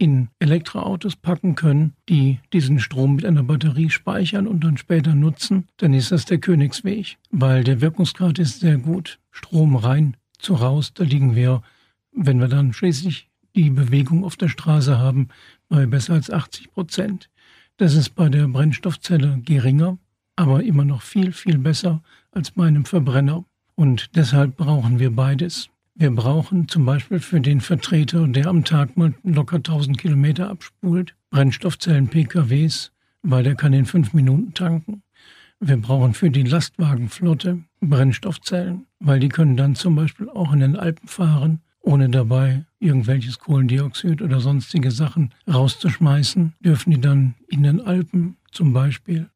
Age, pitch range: 60-79, 135-175 Hz